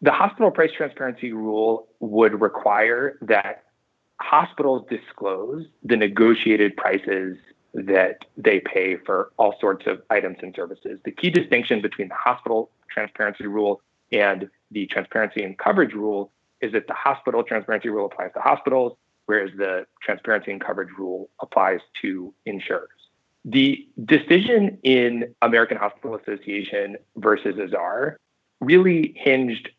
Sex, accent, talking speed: male, American, 130 wpm